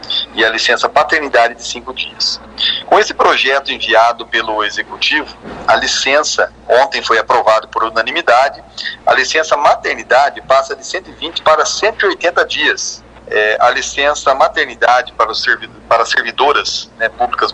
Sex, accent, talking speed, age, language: male, Brazilian, 135 wpm, 40-59, Portuguese